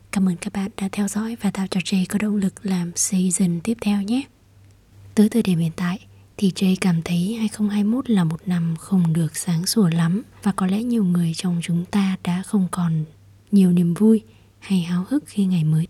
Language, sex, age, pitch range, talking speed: Vietnamese, female, 20-39, 160-205 Hz, 215 wpm